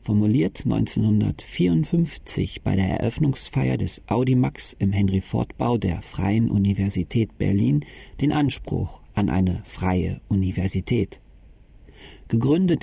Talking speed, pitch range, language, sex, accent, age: 100 wpm, 95-130 Hz, German, male, German, 50-69